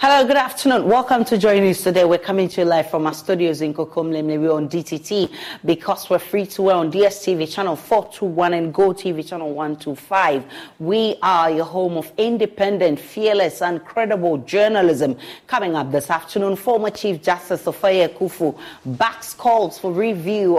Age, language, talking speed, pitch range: 30-49, English, 165 wpm, 160-205 Hz